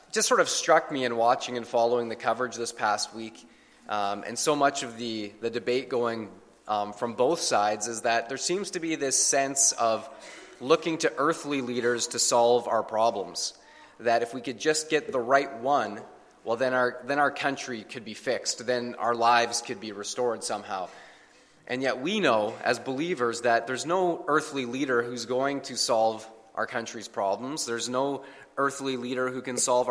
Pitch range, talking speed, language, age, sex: 110-135 Hz, 190 wpm, English, 30-49, male